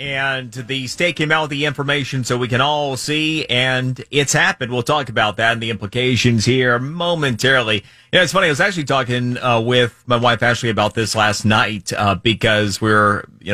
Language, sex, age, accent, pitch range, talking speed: English, male, 30-49, American, 105-130 Hz, 205 wpm